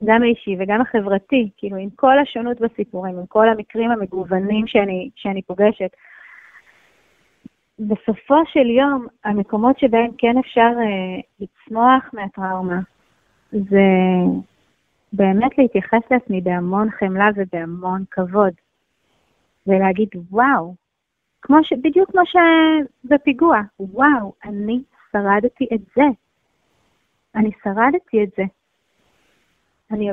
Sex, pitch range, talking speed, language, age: female, 200-270 Hz, 105 wpm, Hebrew, 30-49